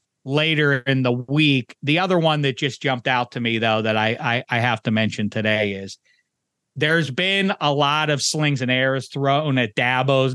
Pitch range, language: 120-145 Hz, English